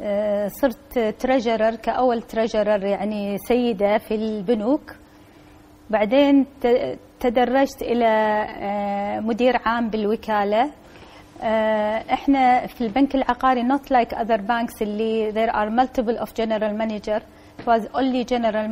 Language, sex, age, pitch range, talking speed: Arabic, female, 30-49, 210-250 Hz, 95 wpm